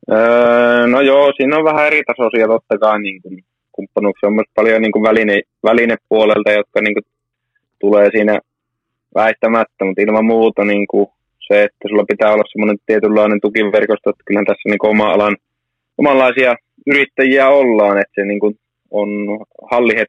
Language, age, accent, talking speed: Finnish, 20-39, native, 150 wpm